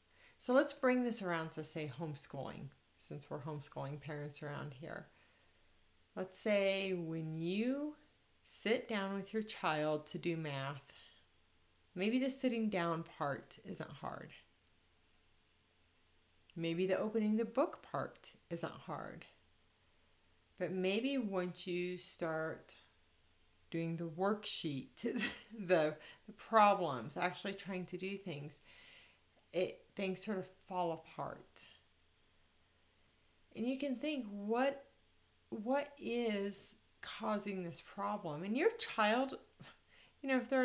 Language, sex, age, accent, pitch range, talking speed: English, female, 40-59, American, 140-220 Hz, 120 wpm